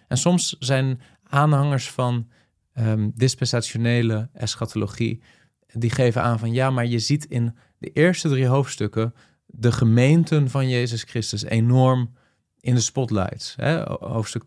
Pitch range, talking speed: 110-130 Hz, 130 wpm